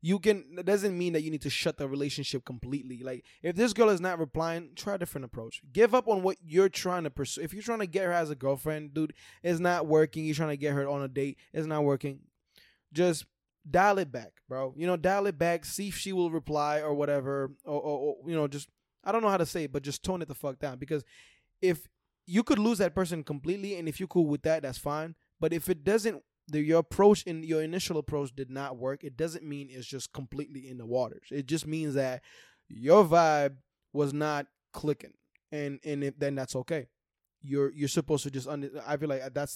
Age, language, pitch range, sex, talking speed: 20-39, English, 135-165 Hz, male, 240 wpm